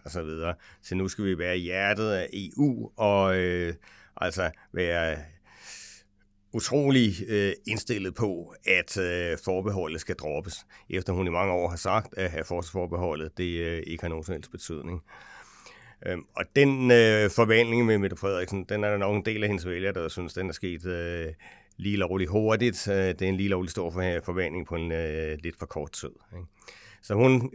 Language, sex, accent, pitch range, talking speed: English, male, Danish, 85-105 Hz, 170 wpm